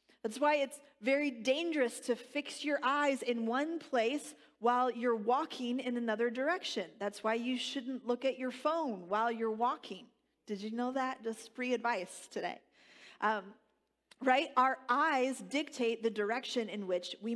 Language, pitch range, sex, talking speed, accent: English, 250-330 Hz, female, 165 wpm, American